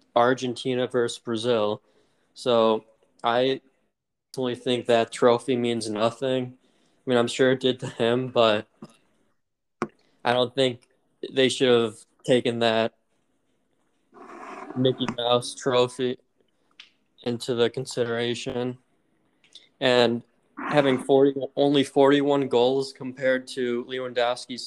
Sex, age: male, 20-39